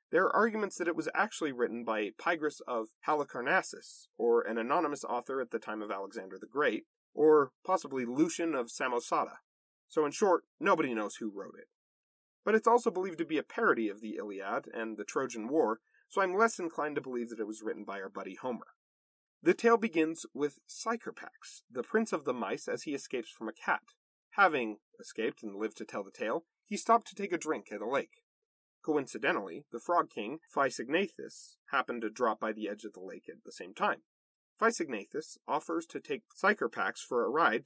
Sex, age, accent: male, 40-59, American